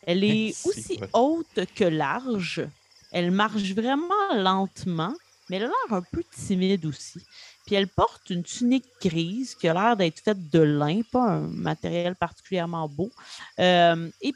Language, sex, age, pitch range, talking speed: French, female, 30-49, 170-230 Hz, 160 wpm